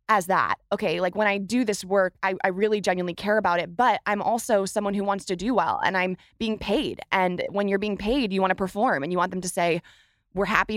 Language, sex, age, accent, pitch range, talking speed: English, female, 20-39, American, 185-225 Hz, 255 wpm